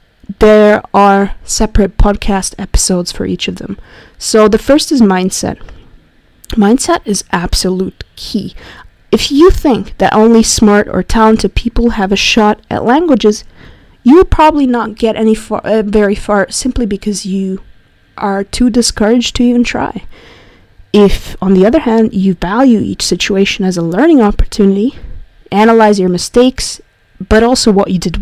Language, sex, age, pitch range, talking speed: English, female, 20-39, 185-225 Hz, 155 wpm